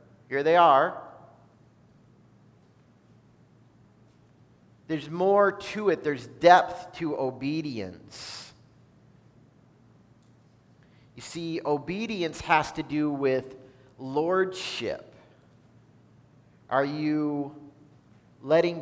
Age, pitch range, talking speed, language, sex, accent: 40-59, 140-195 Hz, 70 wpm, English, male, American